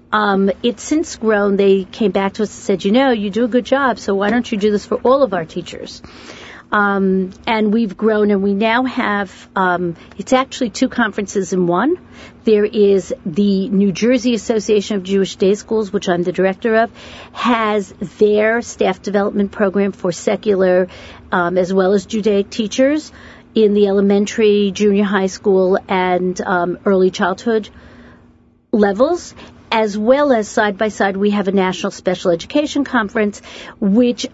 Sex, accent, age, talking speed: female, American, 50-69, 165 wpm